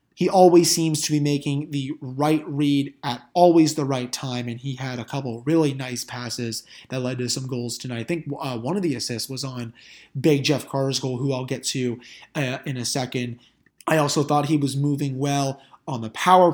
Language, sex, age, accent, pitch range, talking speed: English, male, 20-39, American, 130-155 Hz, 215 wpm